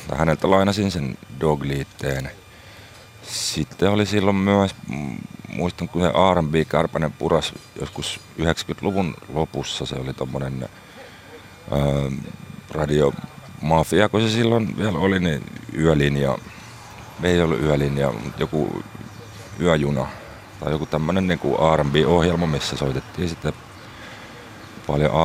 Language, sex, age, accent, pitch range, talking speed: Finnish, male, 40-59, native, 70-100 Hz, 105 wpm